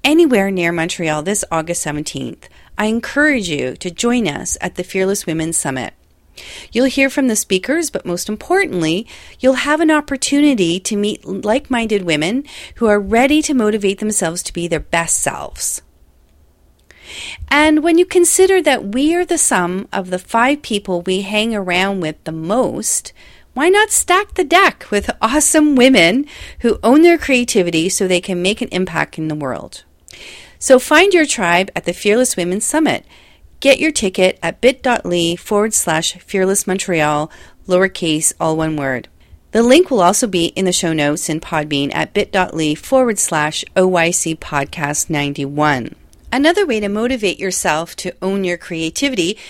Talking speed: 160 wpm